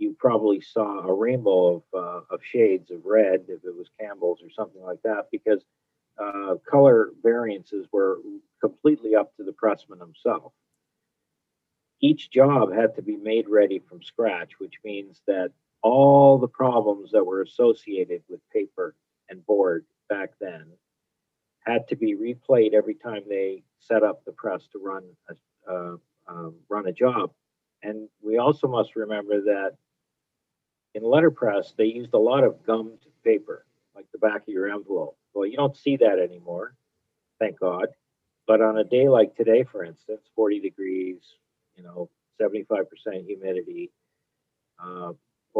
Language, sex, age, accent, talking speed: English, male, 50-69, American, 155 wpm